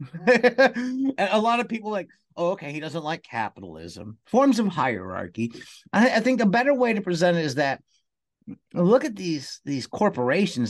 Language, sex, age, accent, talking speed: English, male, 50-69, American, 175 wpm